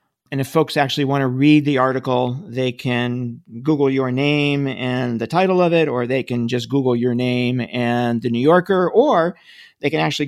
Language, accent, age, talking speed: English, American, 50-69, 200 wpm